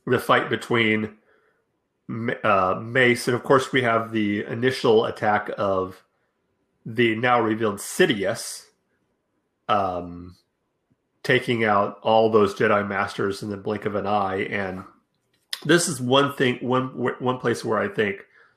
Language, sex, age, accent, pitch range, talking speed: English, male, 30-49, American, 95-120 Hz, 135 wpm